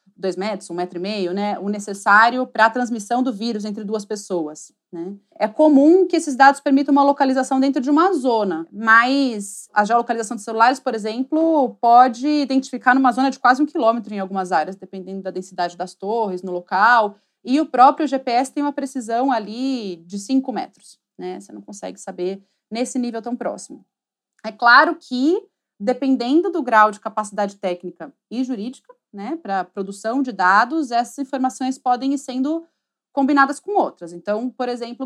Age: 30-49